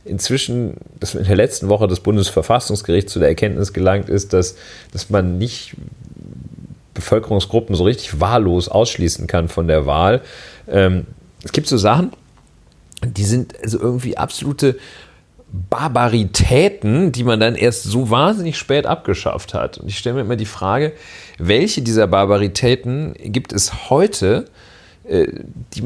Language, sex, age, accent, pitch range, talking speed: German, male, 40-59, German, 95-120 Hz, 135 wpm